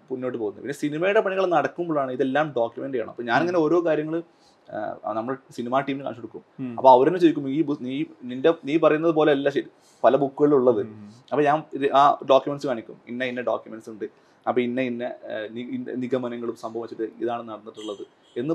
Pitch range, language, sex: 130-180 Hz, Malayalam, male